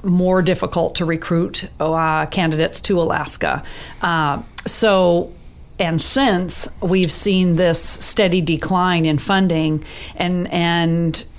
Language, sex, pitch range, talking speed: English, female, 160-185 Hz, 110 wpm